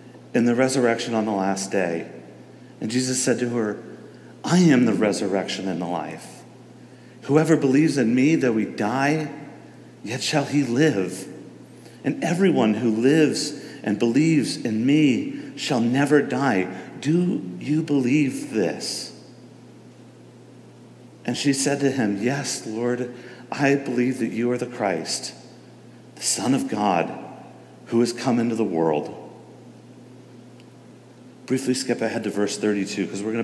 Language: English